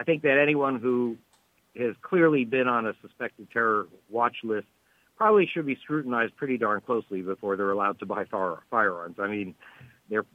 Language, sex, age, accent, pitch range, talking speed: English, male, 50-69, American, 105-130 Hz, 175 wpm